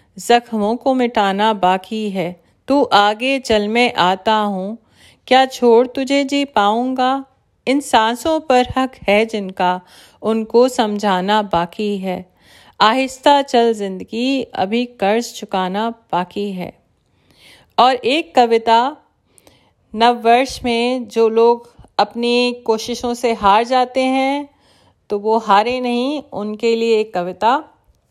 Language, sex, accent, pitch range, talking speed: Hindi, female, native, 205-250 Hz, 120 wpm